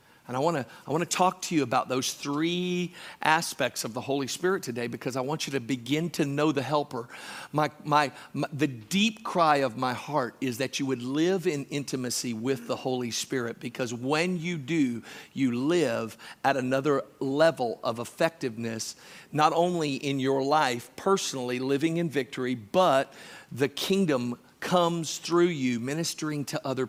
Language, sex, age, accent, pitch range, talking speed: English, male, 50-69, American, 130-170 Hz, 175 wpm